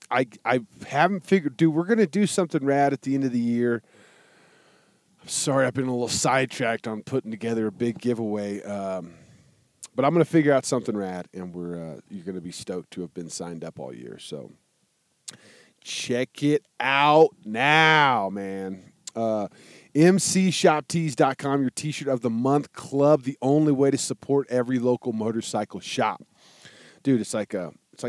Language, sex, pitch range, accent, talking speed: English, male, 115-155 Hz, American, 170 wpm